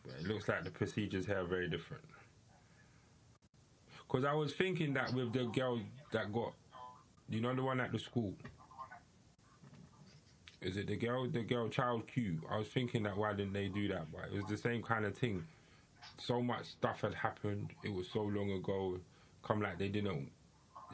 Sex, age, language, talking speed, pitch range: male, 20-39, English, 185 wpm, 100-130 Hz